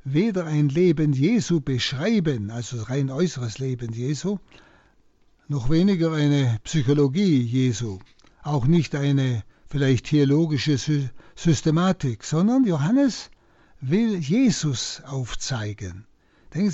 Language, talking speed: German, 95 wpm